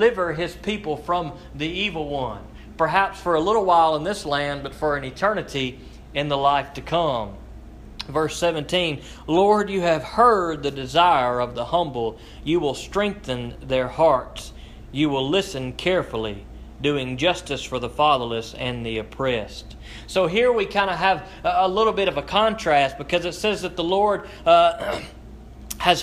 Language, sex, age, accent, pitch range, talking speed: English, male, 40-59, American, 145-190 Hz, 165 wpm